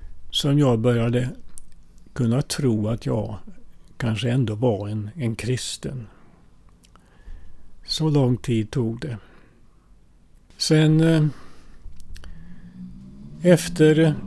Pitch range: 95-135 Hz